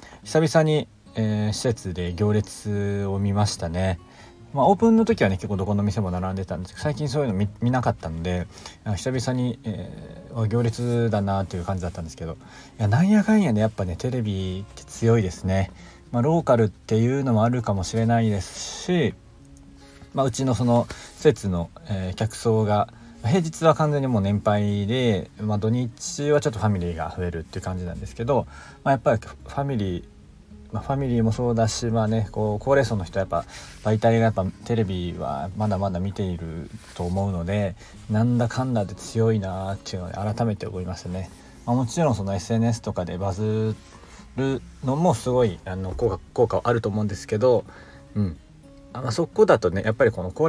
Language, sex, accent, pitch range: Japanese, male, native, 95-120 Hz